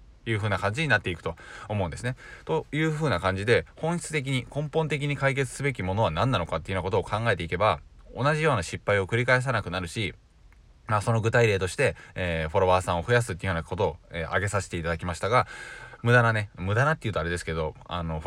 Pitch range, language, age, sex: 90-125 Hz, Japanese, 20-39, male